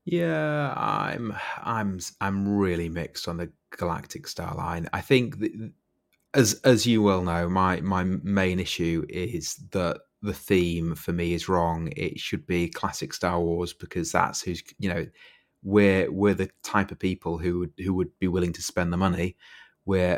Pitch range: 90-105 Hz